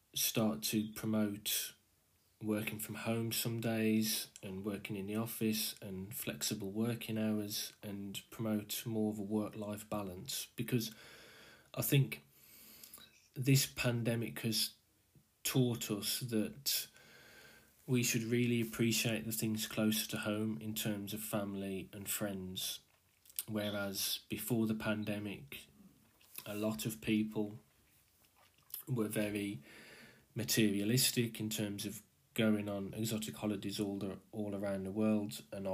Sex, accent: male, British